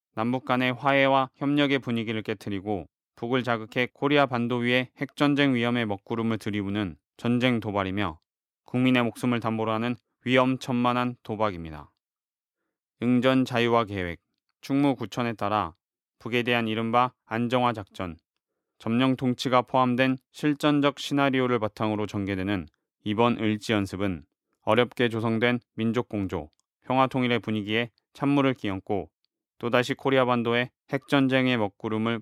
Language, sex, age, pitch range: Korean, male, 20-39, 110-130 Hz